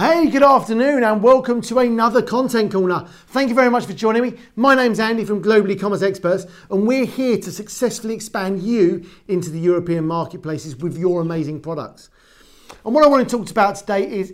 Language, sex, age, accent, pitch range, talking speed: English, male, 40-59, British, 175-225 Hz, 200 wpm